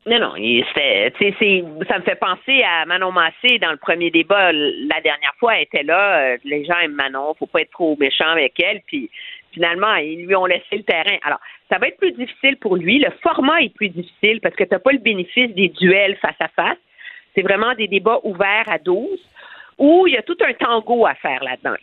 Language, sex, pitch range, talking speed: French, female, 190-285 Hz, 230 wpm